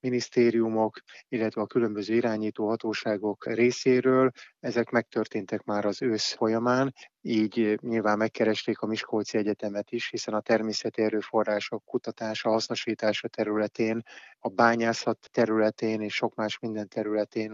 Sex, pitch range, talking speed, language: male, 110-125 Hz, 120 wpm, Hungarian